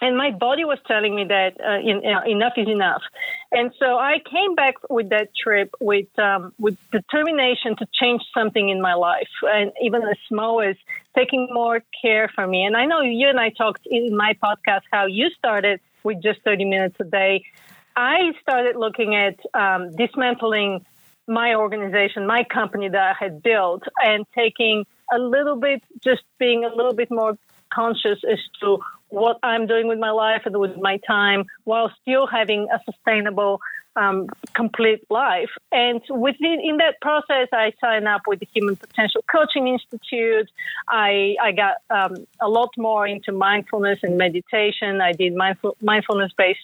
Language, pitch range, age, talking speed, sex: English, 200-245 Hz, 40-59, 175 wpm, female